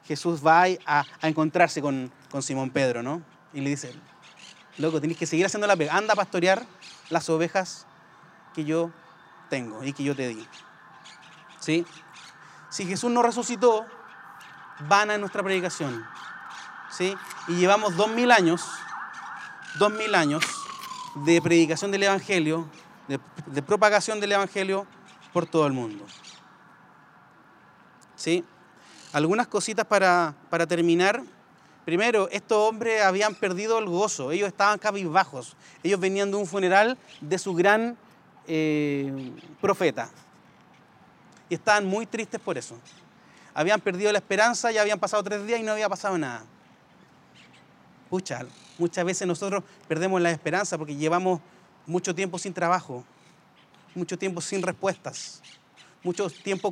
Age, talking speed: 30-49, 135 wpm